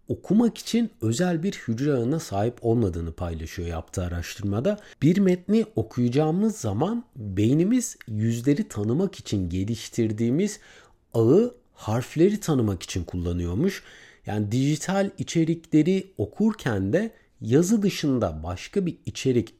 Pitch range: 110-185 Hz